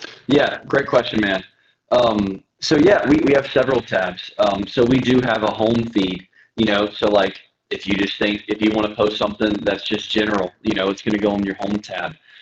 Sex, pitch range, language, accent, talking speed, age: male, 95-110 Hz, English, American, 225 wpm, 20-39